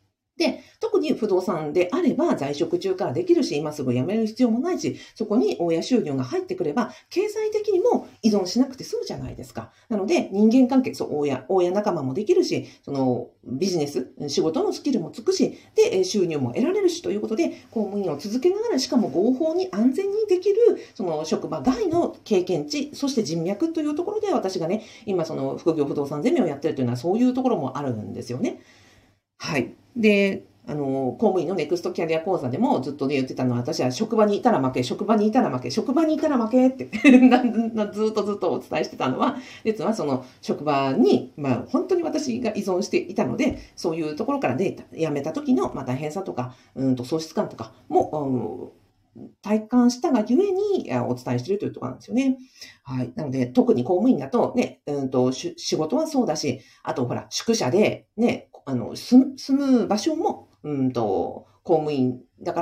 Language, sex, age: Japanese, female, 50-69